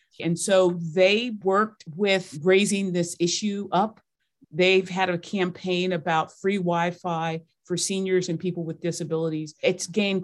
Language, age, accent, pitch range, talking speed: English, 40-59, American, 160-185 Hz, 140 wpm